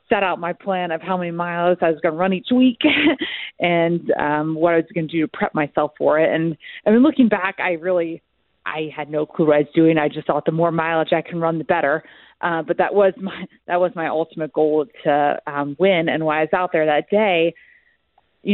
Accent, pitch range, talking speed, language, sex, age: American, 155-185 Hz, 245 wpm, English, female, 30-49